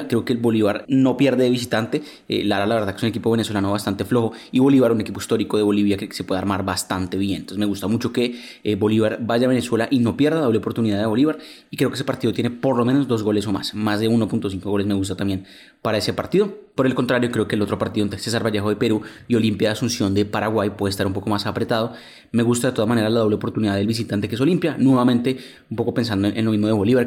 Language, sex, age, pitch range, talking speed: Spanish, male, 20-39, 105-120 Hz, 270 wpm